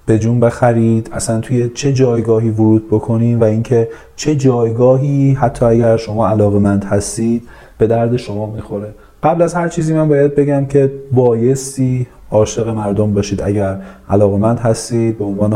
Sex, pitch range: male, 110-130 Hz